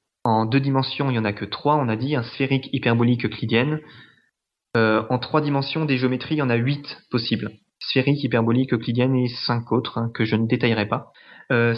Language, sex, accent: French, male, French